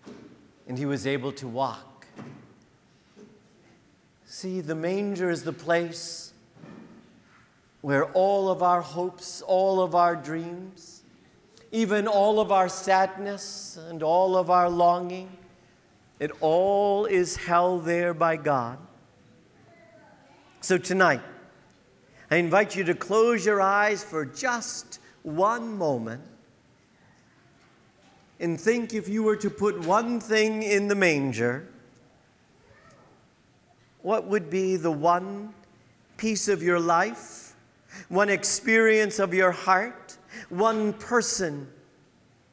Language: English